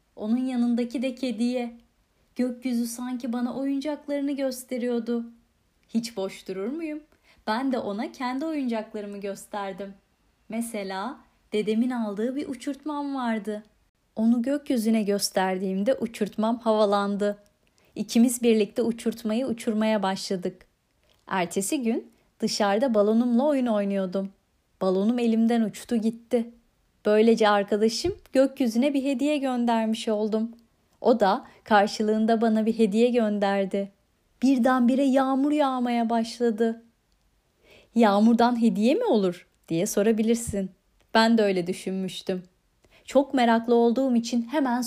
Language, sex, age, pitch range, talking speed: Turkish, female, 30-49, 210-250 Hz, 105 wpm